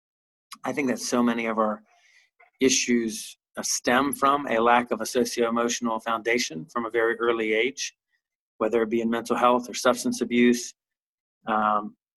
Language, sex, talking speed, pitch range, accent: English, male, 155 wpm, 115-125 Hz, American